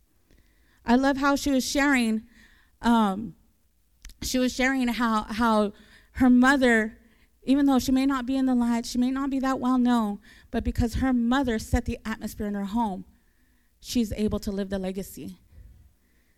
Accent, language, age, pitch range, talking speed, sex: American, English, 30-49, 220-270 Hz, 170 wpm, female